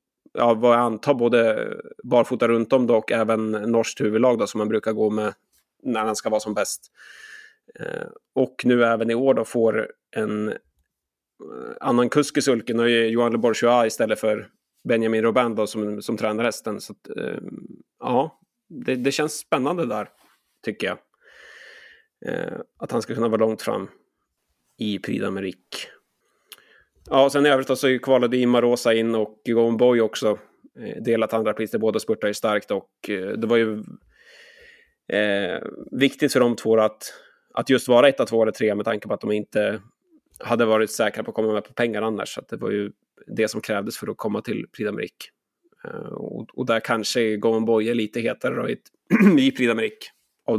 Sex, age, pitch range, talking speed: male, 30-49, 110-130 Hz, 175 wpm